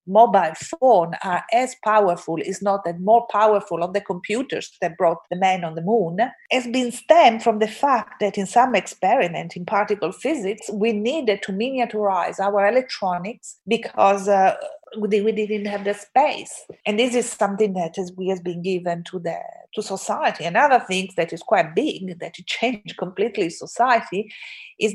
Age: 40-59